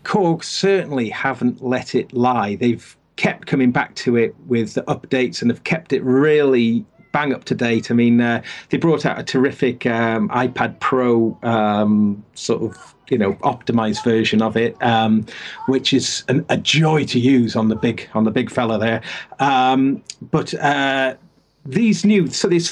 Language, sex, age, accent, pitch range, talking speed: English, male, 40-59, British, 120-180 Hz, 175 wpm